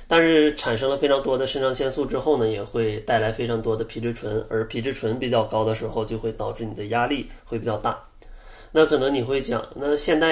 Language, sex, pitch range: Chinese, male, 110-130 Hz